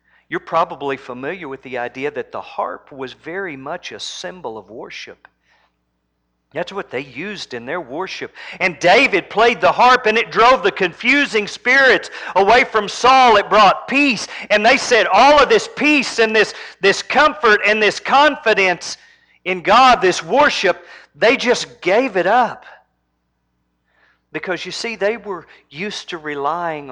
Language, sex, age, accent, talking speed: English, male, 50-69, American, 160 wpm